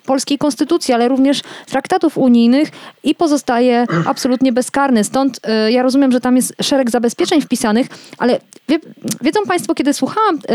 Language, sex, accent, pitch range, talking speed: Polish, female, native, 230-310 Hz, 135 wpm